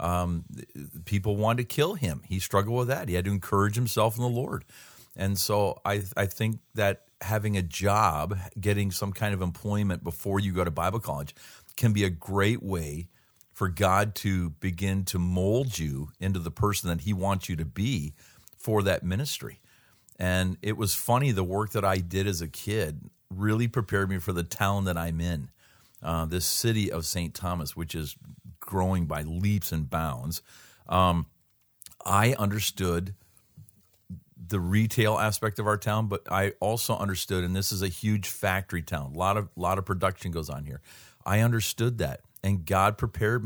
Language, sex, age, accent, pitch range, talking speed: English, male, 50-69, American, 90-105 Hz, 180 wpm